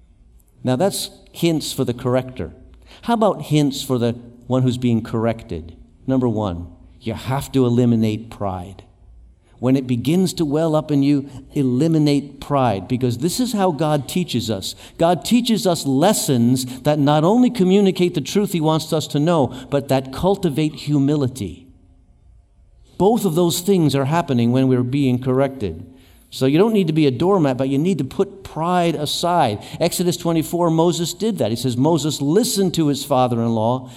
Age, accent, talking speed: 50-69, American, 170 wpm